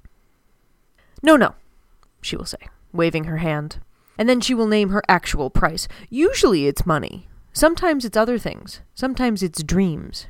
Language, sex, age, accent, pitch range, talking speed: English, female, 30-49, American, 170-220 Hz, 150 wpm